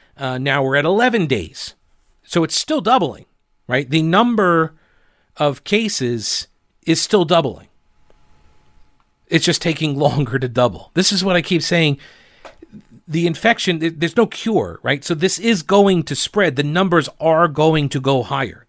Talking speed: 155 wpm